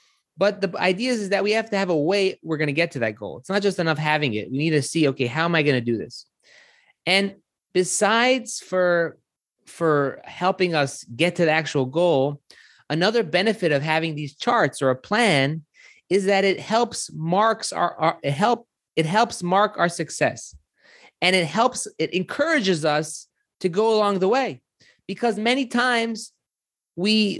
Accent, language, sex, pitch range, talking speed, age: American, English, male, 160-215 Hz, 190 wpm, 30-49